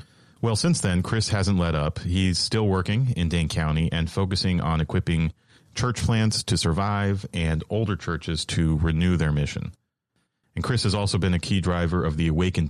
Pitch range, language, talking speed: 80-105 Hz, English, 185 wpm